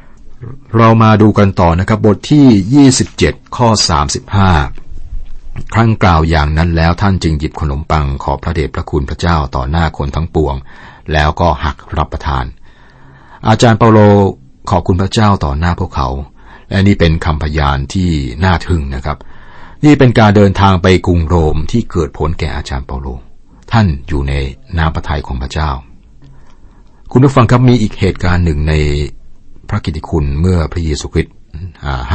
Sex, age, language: male, 60-79, Thai